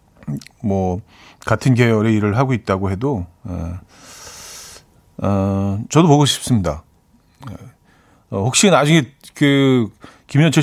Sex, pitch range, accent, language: male, 95-145 Hz, native, Korean